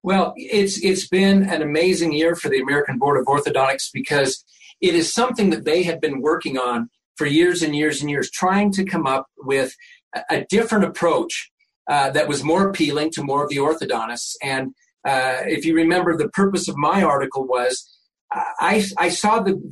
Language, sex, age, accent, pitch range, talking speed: English, male, 40-59, American, 150-195 Hz, 190 wpm